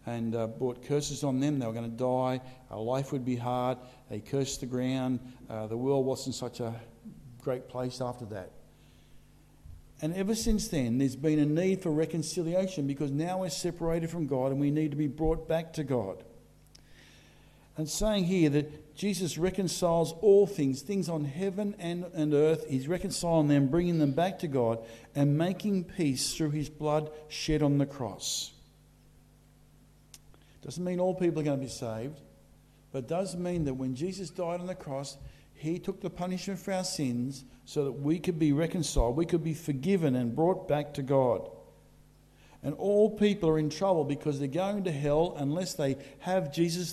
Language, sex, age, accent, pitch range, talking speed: English, male, 50-69, Australian, 130-175 Hz, 185 wpm